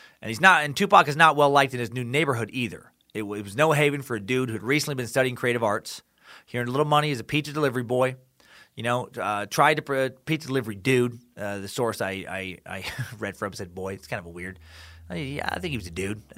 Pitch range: 120-155 Hz